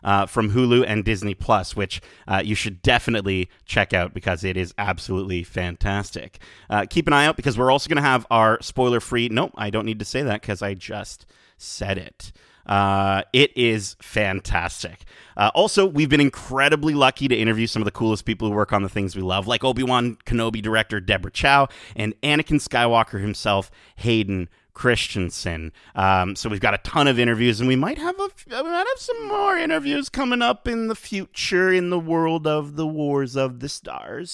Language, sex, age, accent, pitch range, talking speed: English, male, 30-49, American, 100-135 Hz, 195 wpm